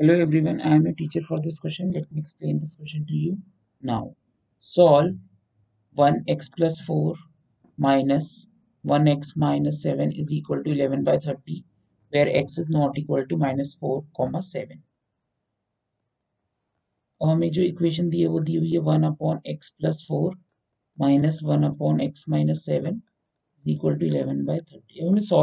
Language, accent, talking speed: Hindi, native, 65 wpm